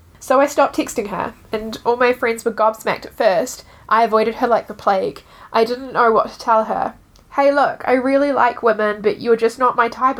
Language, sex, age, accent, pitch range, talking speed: English, female, 10-29, Australian, 210-250 Hz, 225 wpm